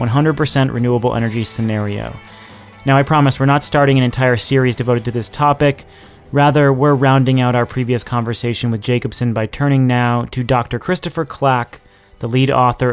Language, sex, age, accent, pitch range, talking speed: English, male, 30-49, American, 115-135 Hz, 165 wpm